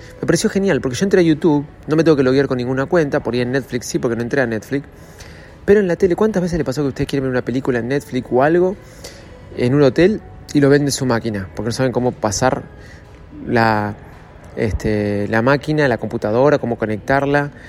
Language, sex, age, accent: Spanish, male, 20-39, Argentinian